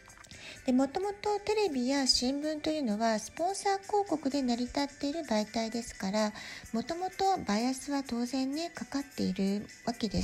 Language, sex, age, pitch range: Japanese, female, 40-59, 220-315 Hz